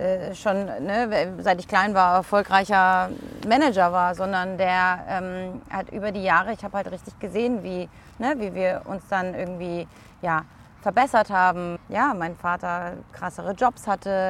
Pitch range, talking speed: 185-220 Hz, 145 wpm